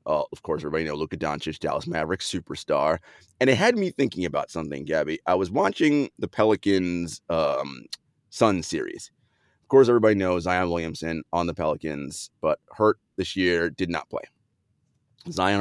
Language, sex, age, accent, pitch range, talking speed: English, male, 30-49, American, 95-140 Hz, 165 wpm